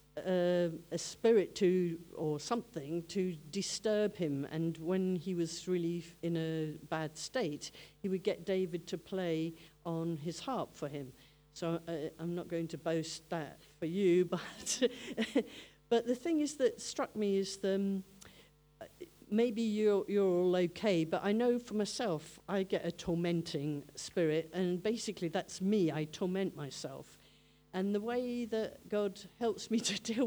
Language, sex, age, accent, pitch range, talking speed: English, female, 50-69, British, 165-200 Hz, 160 wpm